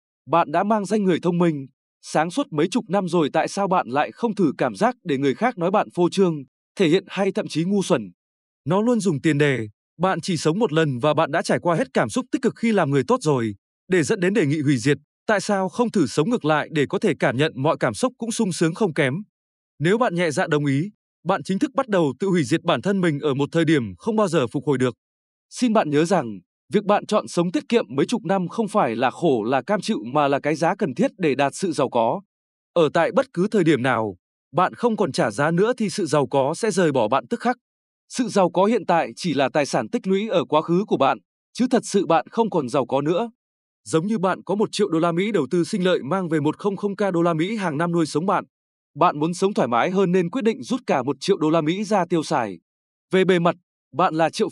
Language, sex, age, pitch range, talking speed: Vietnamese, male, 20-39, 150-205 Hz, 265 wpm